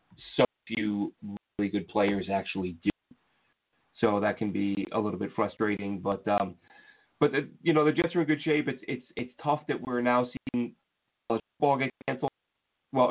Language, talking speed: English, 180 wpm